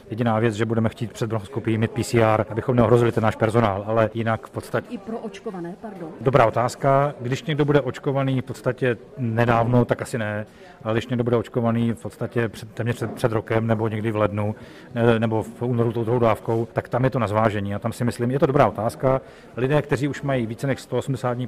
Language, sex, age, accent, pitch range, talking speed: Czech, male, 40-59, native, 115-130 Hz, 205 wpm